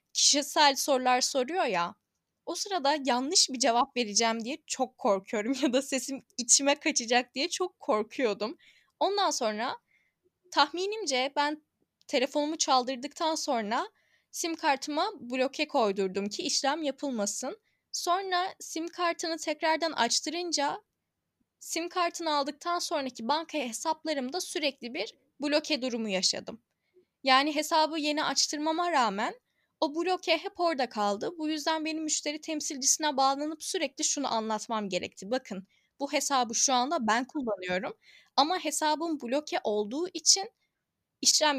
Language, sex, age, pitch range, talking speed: Turkish, female, 10-29, 250-335 Hz, 120 wpm